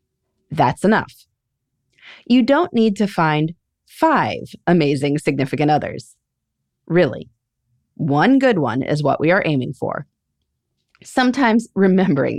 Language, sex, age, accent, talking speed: English, female, 30-49, American, 110 wpm